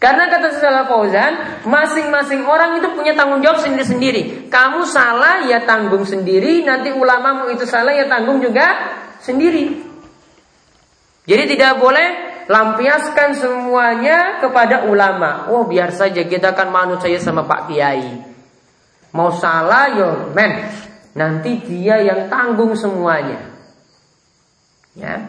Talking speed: 120 wpm